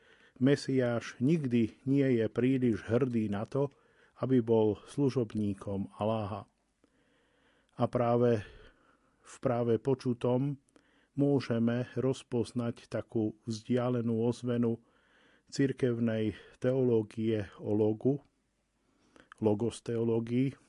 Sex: male